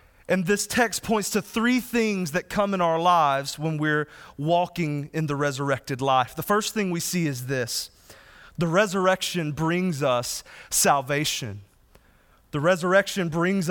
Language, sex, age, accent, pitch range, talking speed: English, male, 30-49, American, 170-220 Hz, 150 wpm